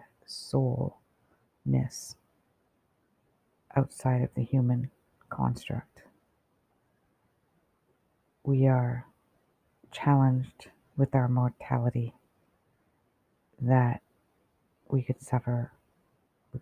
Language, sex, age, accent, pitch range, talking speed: English, female, 50-69, American, 125-135 Hz, 60 wpm